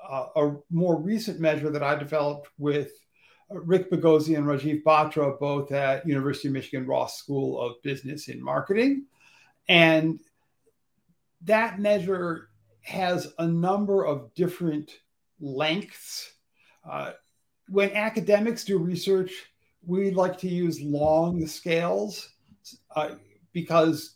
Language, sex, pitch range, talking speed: English, male, 150-195 Hz, 115 wpm